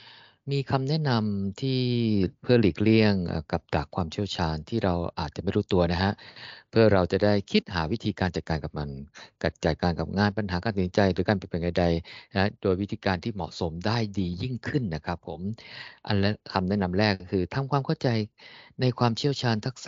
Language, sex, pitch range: Thai, male, 90-120 Hz